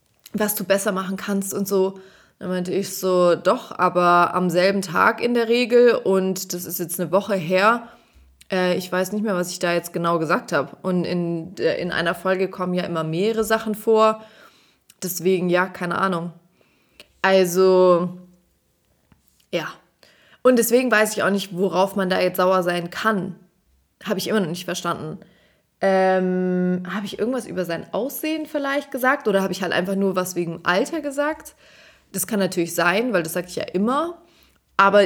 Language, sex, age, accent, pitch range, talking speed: German, female, 20-39, German, 175-205 Hz, 180 wpm